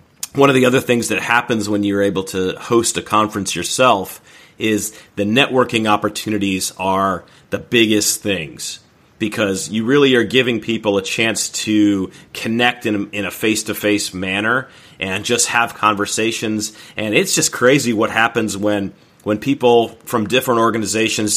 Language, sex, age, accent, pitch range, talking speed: English, male, 30-49, American, 105-125 Hz, 150 wpm